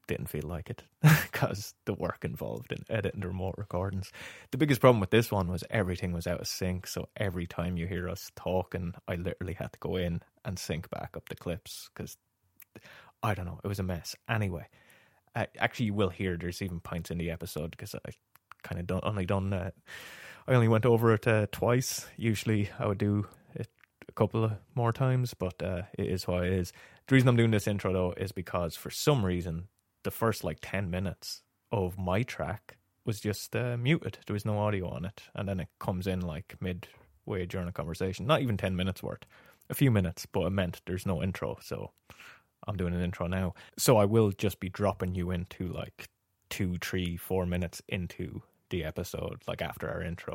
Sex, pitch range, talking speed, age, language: male, 90-110 Hz, 210 wpm, 20-39, English